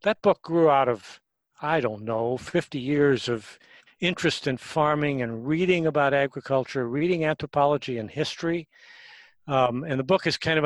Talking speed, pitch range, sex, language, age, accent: 165 wpm, 120-150 Hz, male, English, 60-79, American